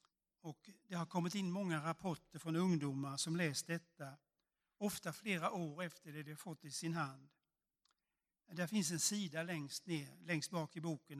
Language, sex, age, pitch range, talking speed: Swedish, male, 60-79, 150-175 Hz, 170 wpm